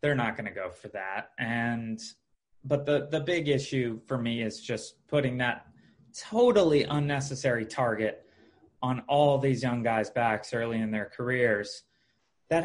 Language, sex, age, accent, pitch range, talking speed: English, male, 20-39, American, 120-150 Hz, 155 wpm